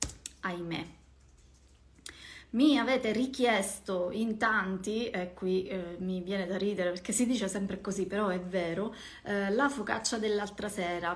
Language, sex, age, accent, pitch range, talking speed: Italian, female, 20-39, native, 180-220 Hz, 135 wpm